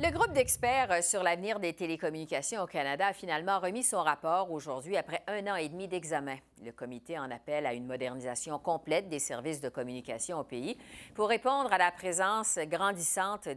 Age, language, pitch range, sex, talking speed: 50-69, French, 155-235 Hz, female, 180 wpm